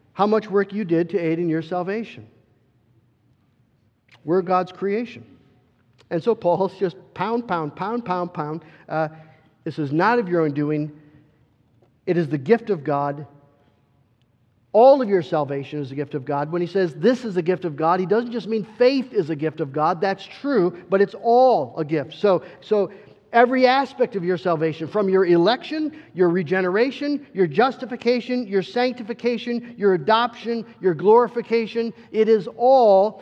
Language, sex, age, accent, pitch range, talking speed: English, male, 50-69, American, 155-235 Hz, 170 wpm